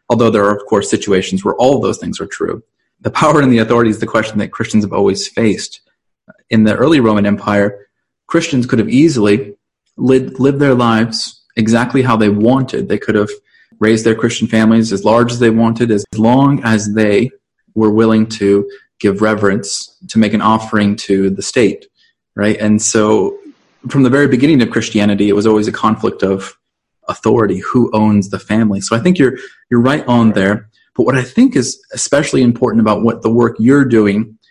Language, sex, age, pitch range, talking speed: English, male, 30-49, 105-125 Hz, 195 wpm